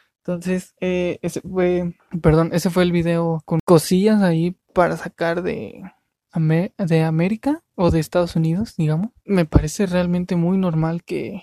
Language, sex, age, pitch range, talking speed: Spanish, male, 20-39, 165-190 Hz, 145 wpm